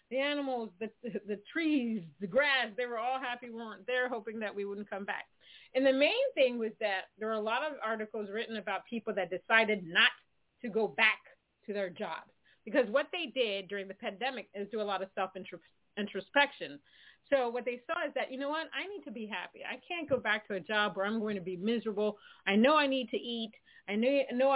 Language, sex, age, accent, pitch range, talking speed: English, female, 30-49, American, 205-265 Hz, 225 wpm